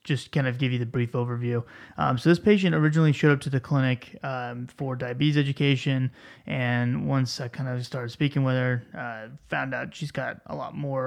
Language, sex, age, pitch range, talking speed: English, male, 20-39, 125-145 Hz, 210 wpm